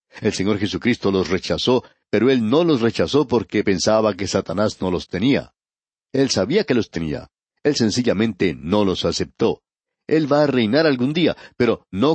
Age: 60-79